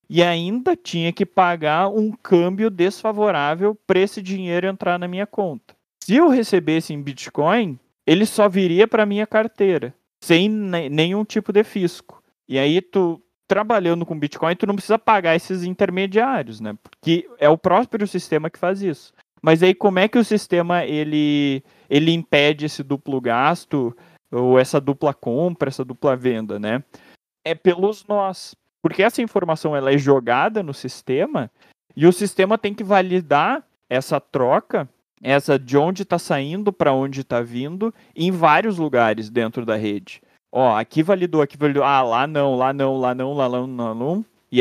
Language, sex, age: Portuguese, male, 20-39